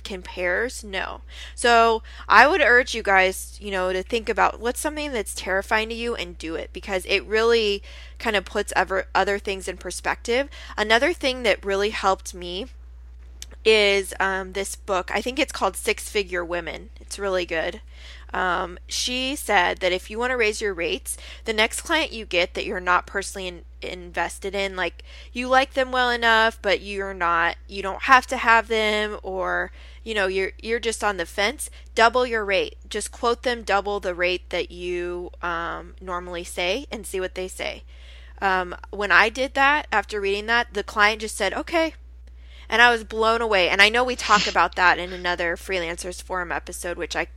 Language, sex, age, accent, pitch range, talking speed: English, female, 20-39, American, 180-230 Hz, 190 wpm